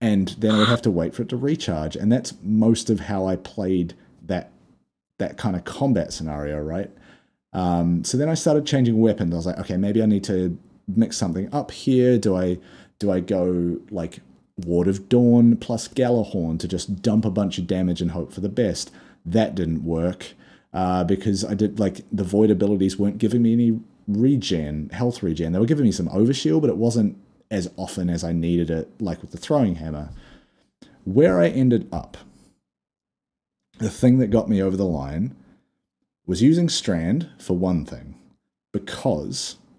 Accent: Australian